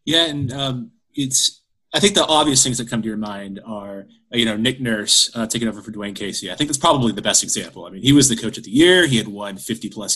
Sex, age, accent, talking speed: male, 30-49, American, 270 wpm